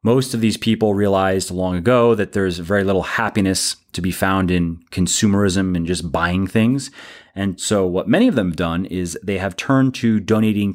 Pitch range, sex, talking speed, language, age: 95-130 Hz, male, 195 wpm, English, 30-49